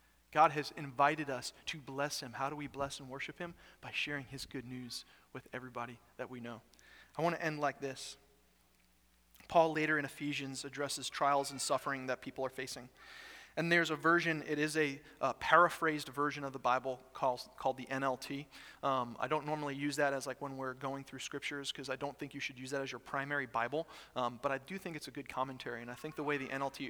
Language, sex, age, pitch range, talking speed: English, male, 30-49, 130-155 Hz, 225 wpm